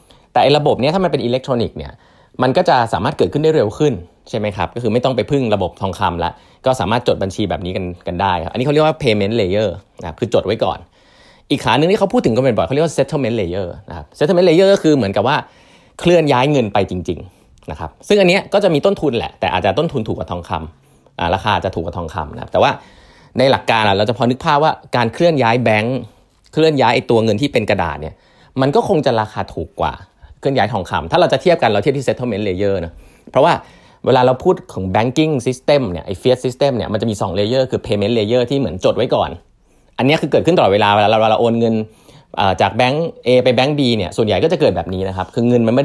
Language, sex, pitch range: Thai, male, 95-135 Hz